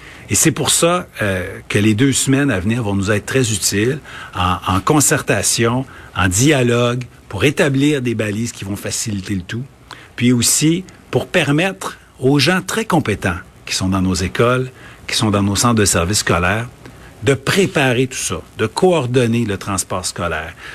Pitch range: 100-135 Hz